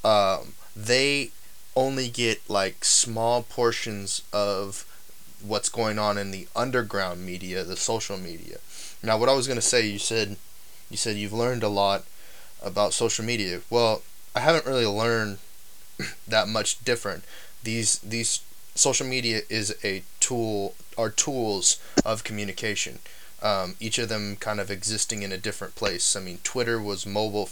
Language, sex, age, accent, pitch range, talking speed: English, male, 10-29, American, 100-115 Hz, 155 wpm